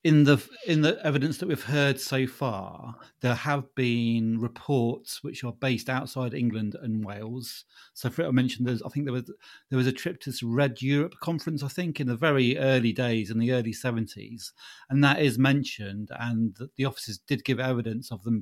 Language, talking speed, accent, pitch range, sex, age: English, 200 wpm, British, 115-145 Hz, male, 40-59